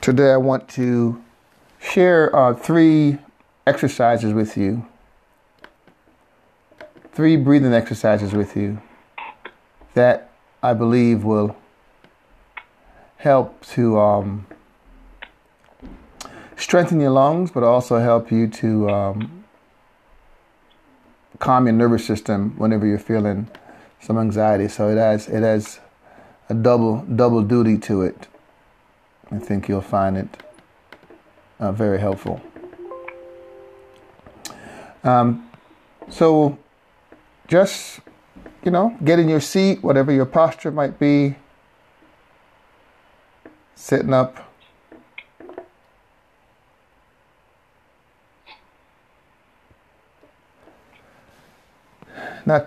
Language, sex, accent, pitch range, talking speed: English, male, American, 110-145 Hz, 85 wpm